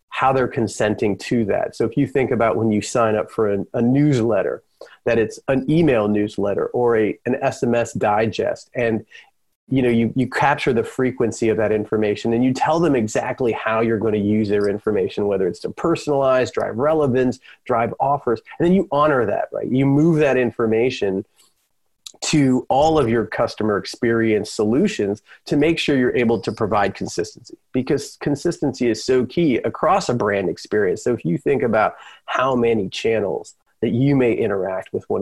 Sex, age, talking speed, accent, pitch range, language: male, 30-49, 180 wpm, American, 115-145 Hz, English